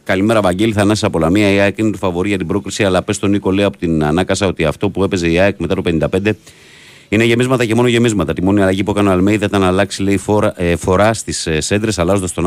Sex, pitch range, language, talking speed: male, 80-100 Hz, Greek, 265 wpm